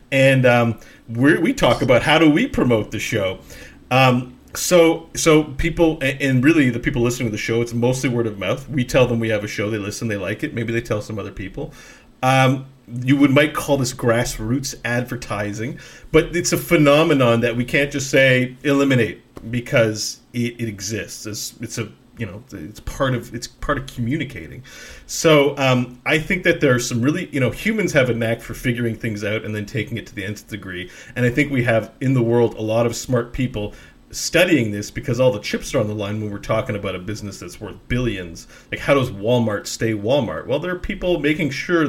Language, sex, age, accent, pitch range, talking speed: English, male, 40-59, American, 110-135 Hz, 220 wpm